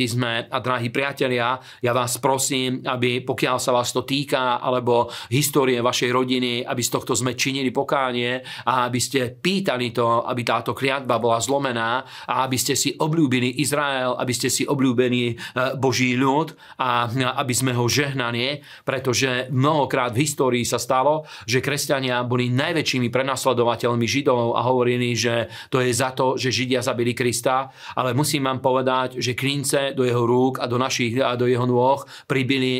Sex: male